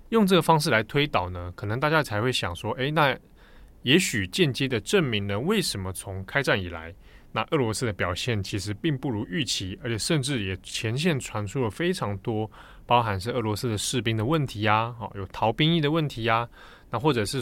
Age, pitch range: 20-39, 100-140 Hz